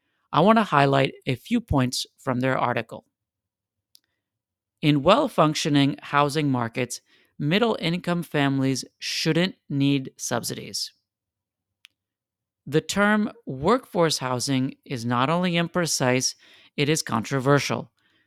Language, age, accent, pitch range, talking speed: English, 40-59, American, 125-160 Hz, 105 wpm